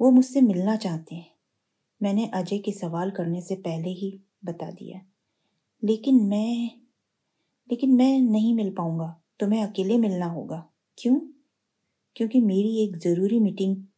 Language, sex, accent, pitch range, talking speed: Hindi, female, native, 175-220 Hz, 140 wpm